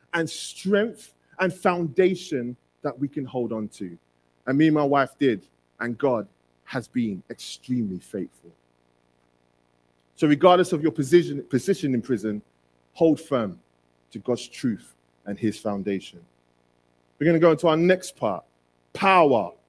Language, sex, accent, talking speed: English, male, British, 145 wpm